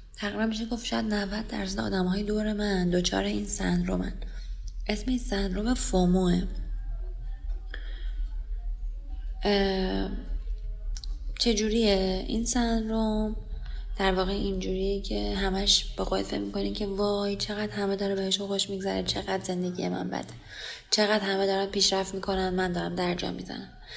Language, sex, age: Persian, female, 20-39